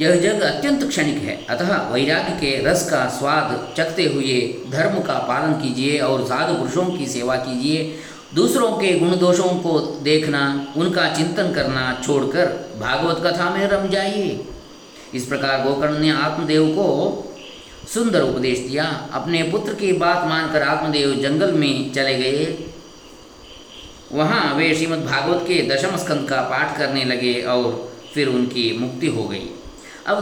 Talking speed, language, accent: 145 wpm, Kannada, native